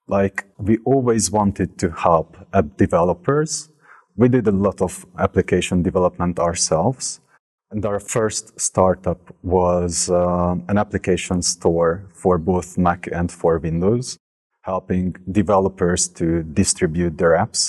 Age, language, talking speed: 30-49, English, 125 wpm